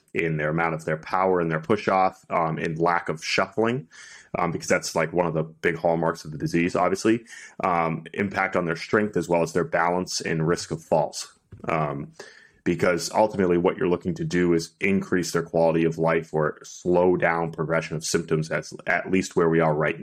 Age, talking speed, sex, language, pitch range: 30-49, 205 wpm, male, English, 80-90 Hz